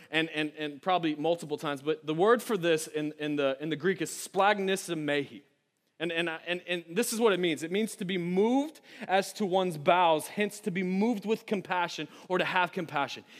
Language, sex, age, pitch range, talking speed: English, male, 20-39, 165-230 Hz, 210 wpm